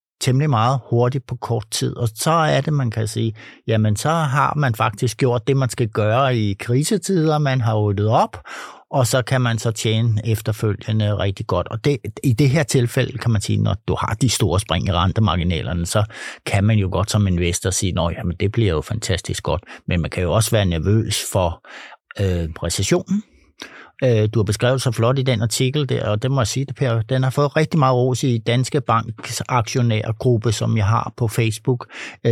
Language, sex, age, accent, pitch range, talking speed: Danish, male, 60-79, native, 110-130 Hz, 200 wpm